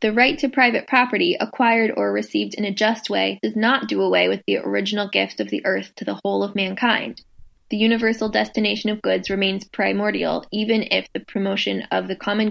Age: 10-29